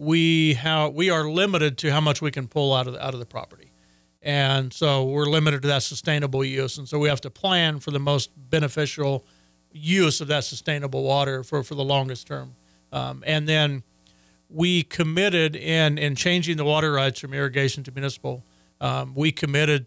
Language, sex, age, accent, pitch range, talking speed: English, male, 40-59, American, 135-155 Hz, 195 wpm